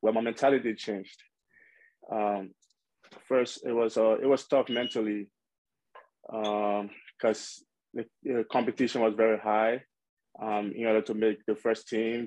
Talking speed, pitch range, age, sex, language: 135 wpm, 105-115 Hz, 20-39, male, English